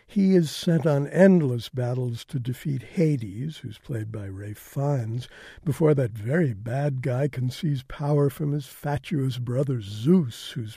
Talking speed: 155 wpm